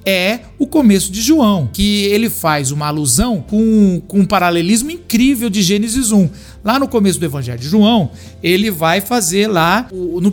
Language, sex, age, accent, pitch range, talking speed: Portuguese, male, 50-69, Brazilian, 180-240 Hz, 175 wpm